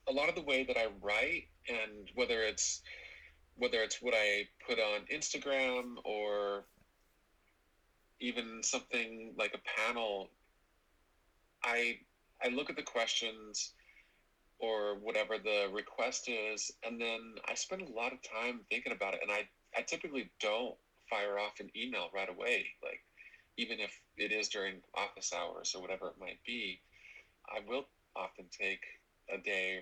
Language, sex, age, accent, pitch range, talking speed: English, male, 40-59, American, 95-115 Hz, 155 wpm